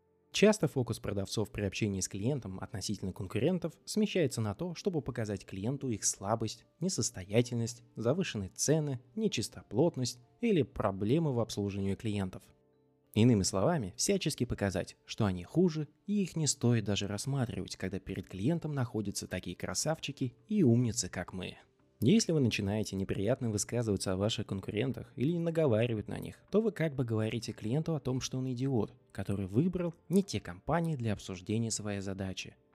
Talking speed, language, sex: 150 wpm, Russian, male